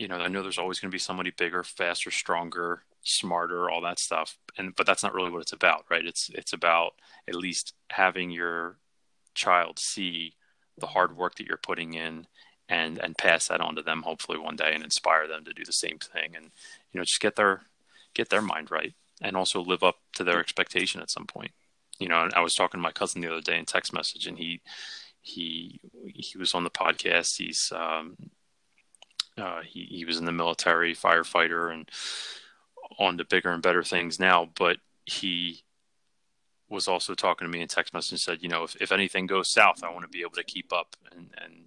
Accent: American